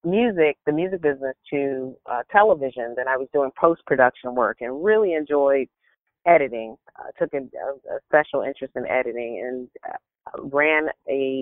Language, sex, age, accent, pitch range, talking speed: English, female, 30-49, American, 130-150 Hz, 145 wpm